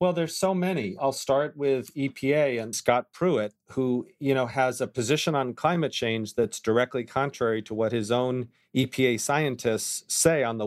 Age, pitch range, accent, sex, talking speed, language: 40-59, 110-135 Hz, American, male, 180 wpm, English